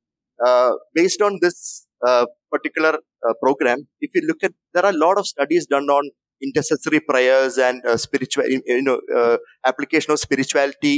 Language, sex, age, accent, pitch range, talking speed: English, male, 30-49, Indian, 130-180 Hz, 165 wpm